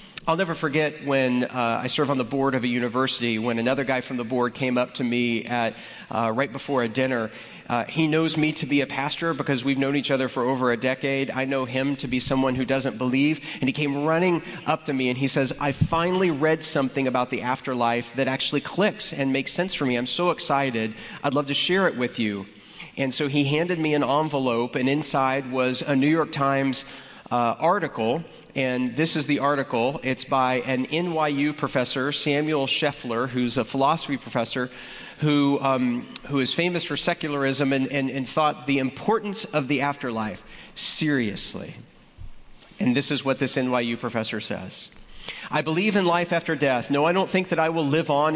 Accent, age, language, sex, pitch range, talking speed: American, 40-59, English, male, 130-155 Hz, 200 wpm